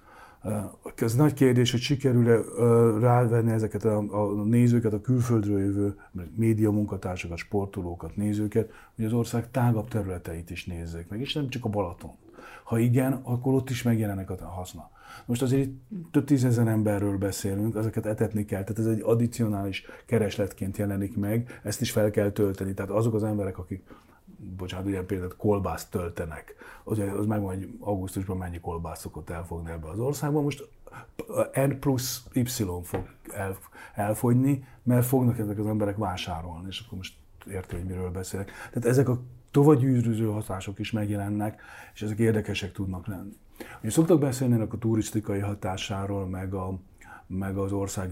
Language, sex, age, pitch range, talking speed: Hungarian, male, 40-59, 95-120 Hz, 150 wpm